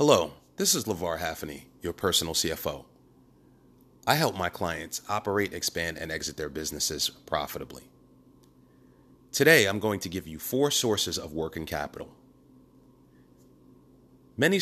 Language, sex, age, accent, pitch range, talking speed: English, male, 30-49, American, 85-110 Hz, 125 wpm